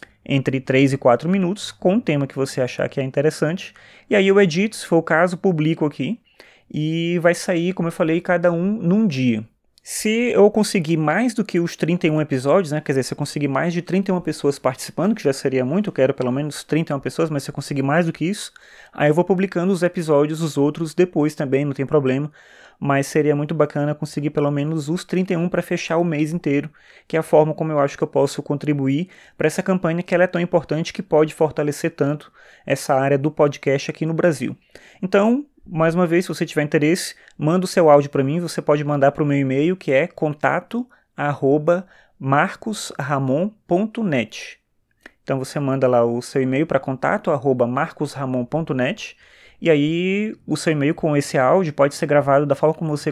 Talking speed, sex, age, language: 200 wpm, male, 20-39, Portuguese